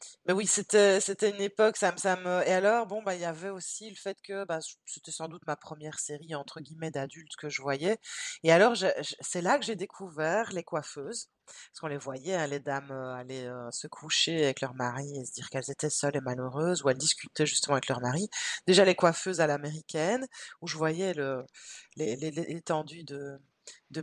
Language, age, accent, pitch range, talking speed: French, 30-49, French, 140-185 Hz, 220 wpm